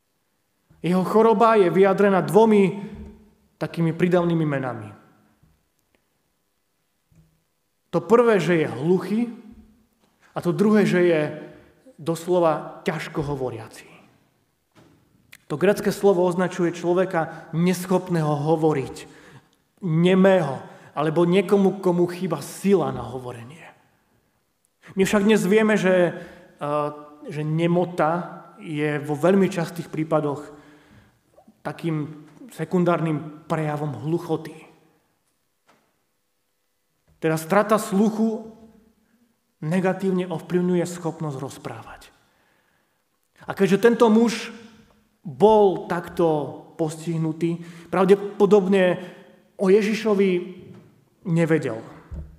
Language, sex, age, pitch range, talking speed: Slovak, male, 30-49, 155-200 Hz, 80 wpm